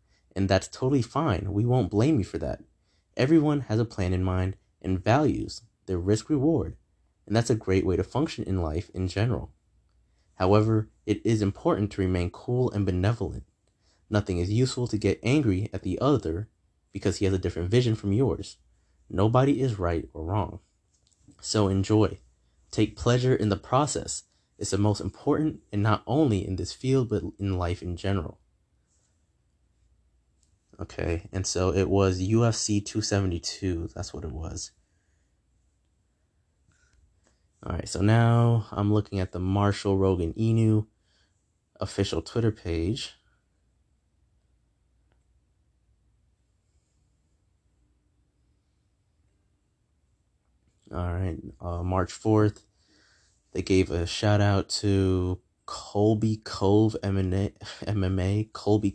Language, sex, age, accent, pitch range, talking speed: English, male, 20-39, American, 90-110 Hz, 125 wpm